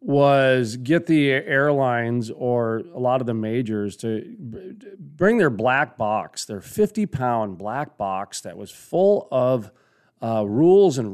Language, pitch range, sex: English, 125-165 Hz, male